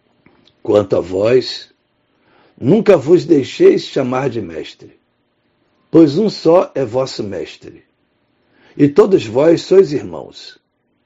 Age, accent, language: 60-79, Brazilian, Portuguese